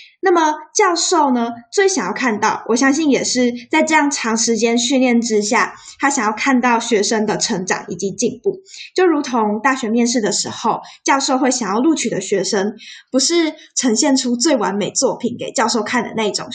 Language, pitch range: Chinese, 215-270 Hz